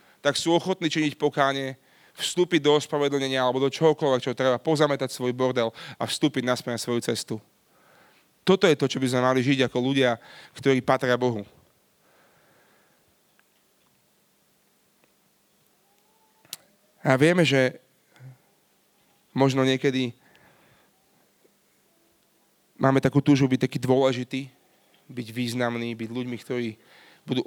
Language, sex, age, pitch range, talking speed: Slovak, male, 30-49, 120-140 Hz, 110 wpm